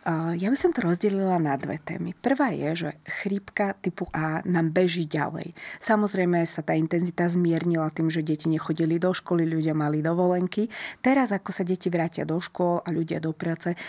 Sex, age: female, 20-39